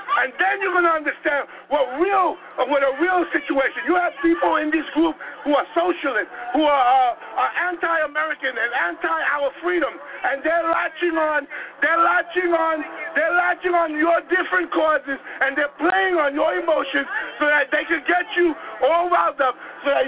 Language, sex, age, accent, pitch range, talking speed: English, male, 50-69, American, 295-355 Hz, 180 wpm